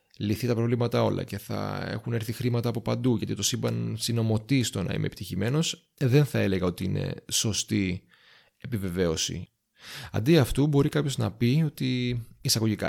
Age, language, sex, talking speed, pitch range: 30-49, Greek, male, 160 wpm, 105-145 Hz